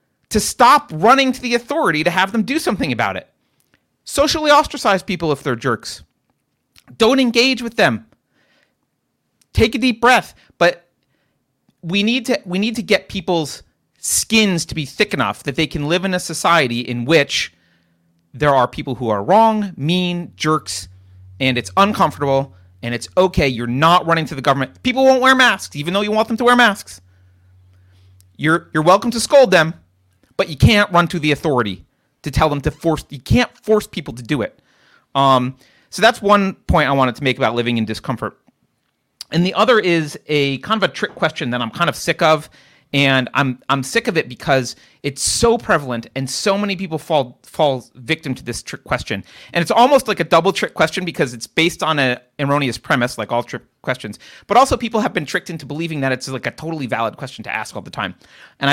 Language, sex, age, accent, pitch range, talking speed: English, male, 30-49, American, 130-195 Hz, 200 wpm